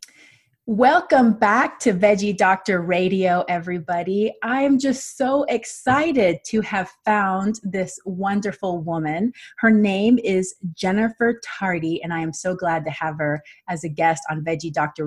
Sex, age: female, 30-49